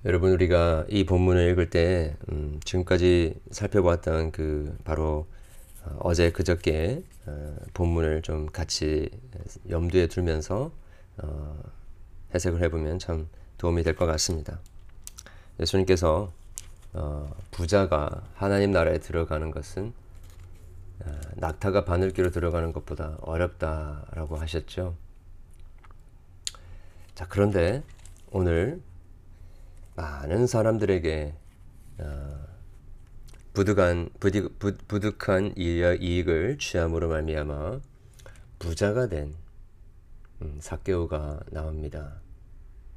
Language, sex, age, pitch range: Korean, male, 40-59, 80-95 Hz